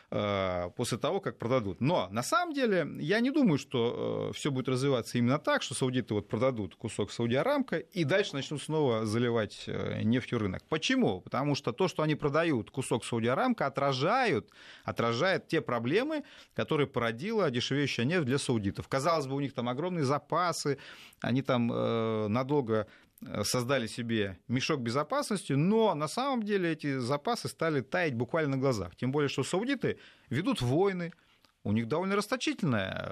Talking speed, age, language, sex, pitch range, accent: 150 wpm, 30-49, Russian, male, 115-185 Hz, native